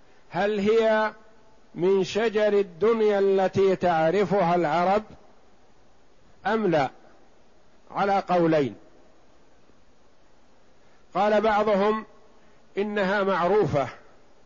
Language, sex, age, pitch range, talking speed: Arabic, male, 50-69, 175-210 Hz, 65 wpm